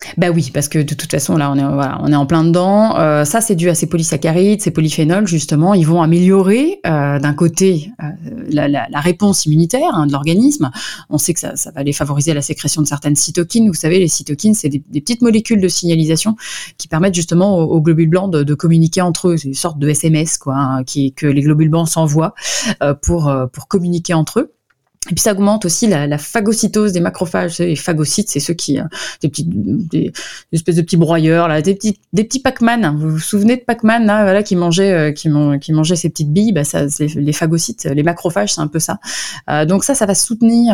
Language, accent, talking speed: French, French, 240 wpm